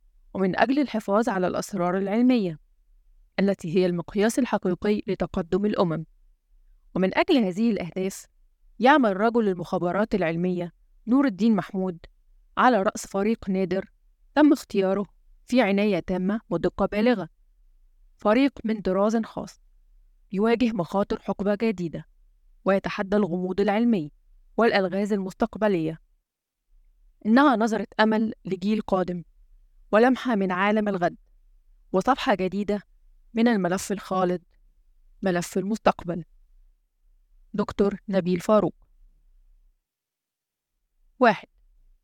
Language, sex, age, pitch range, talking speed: Arabic, female, 20-39, 180-220 Hz, 95 wpm